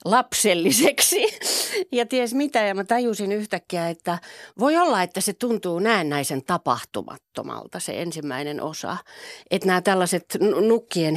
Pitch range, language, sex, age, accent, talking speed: 145-200 Hz, Finnish, female, 40-59, native, 125 wpm